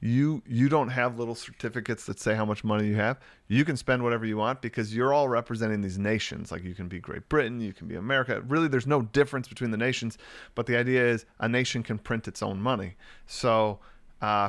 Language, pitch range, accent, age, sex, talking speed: English, 110-135 Hz, American, 30-49, male, 230 wpm